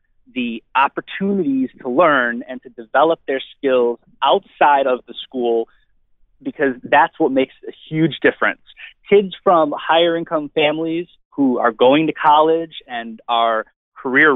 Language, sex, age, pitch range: English, male, 20-39, 120-165 Hz